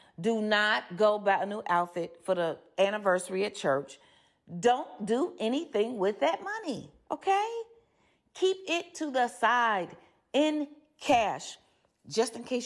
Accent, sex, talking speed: American, female, 135 wpm